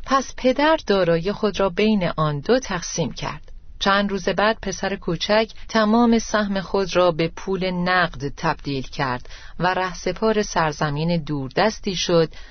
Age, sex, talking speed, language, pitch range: 40-59, female, 145 wpm, Persian, 165-215 Hz